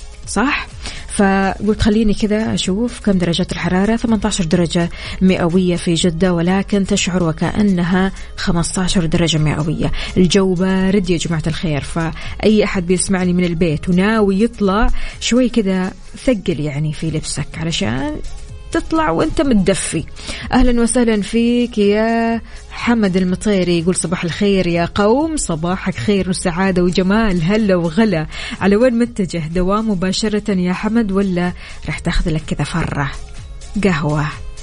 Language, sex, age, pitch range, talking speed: Arabic, female, 20-39, 175-215 Hz, 125 wpm